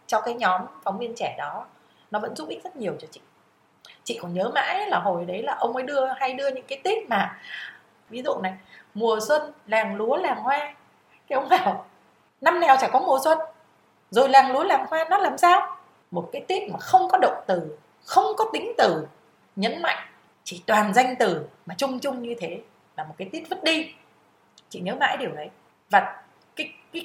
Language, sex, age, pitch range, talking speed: Vietnamese, female, 20-39, 190-275 Hz, 210 wpm